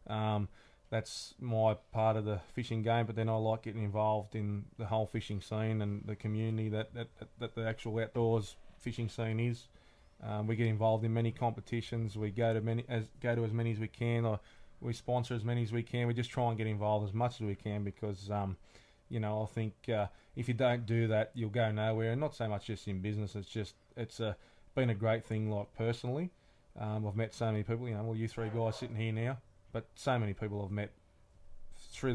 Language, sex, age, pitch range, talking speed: English, male, 20-39, 105-115 Hz, 230 wpm